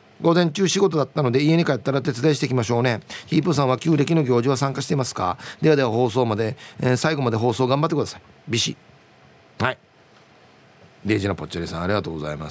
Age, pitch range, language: 40-59, 115-165 Hz, Japanese